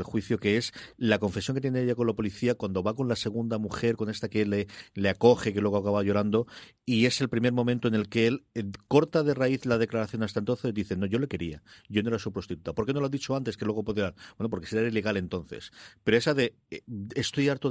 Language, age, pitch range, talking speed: Spanish, 40-59, 100-130 Hz, 260 wpm